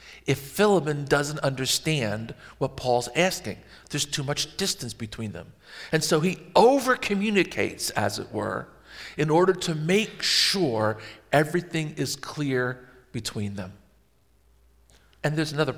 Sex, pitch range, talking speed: male, 120-160 Hz, 125 wpm